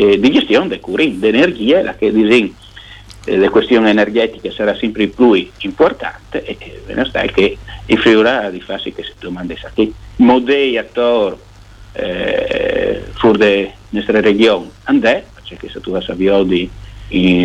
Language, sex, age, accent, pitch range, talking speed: Italian, male, 50-69, native, 100-115 Hz, 140 wpm